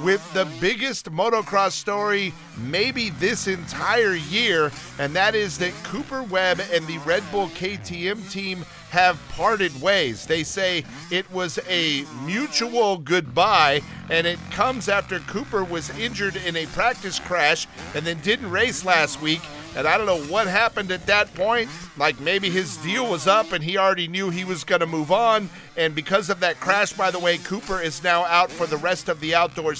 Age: 50-69